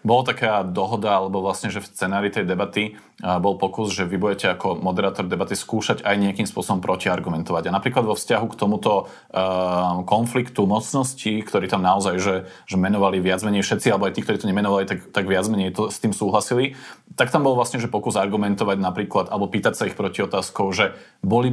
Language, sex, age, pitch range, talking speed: Slovak, male, 30-49, 100-115 Hz, 200 wpm